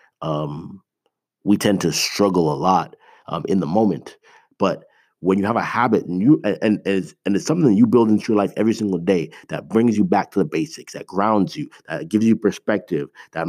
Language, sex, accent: English, male, American